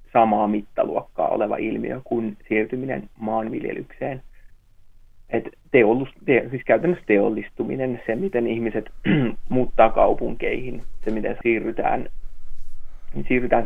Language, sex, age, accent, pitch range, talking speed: Finnish, male, 30-49, native, 105-125 Hz, 90 wpm